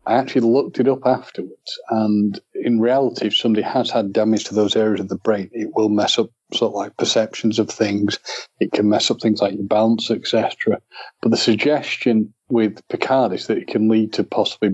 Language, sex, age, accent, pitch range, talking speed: English, male, 40-59, British, 100-115 Hz, 210 wpm